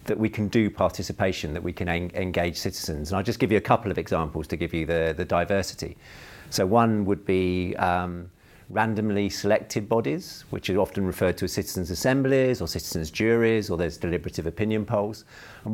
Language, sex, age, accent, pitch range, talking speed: English, male, 50-69, British, 95-115 Hz, 190 wpm